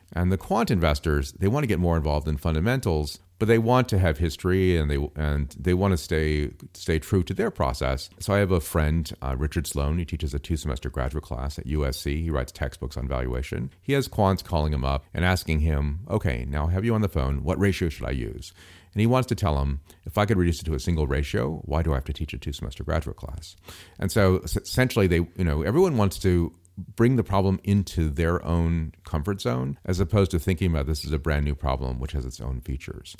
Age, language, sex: 40-59, English, male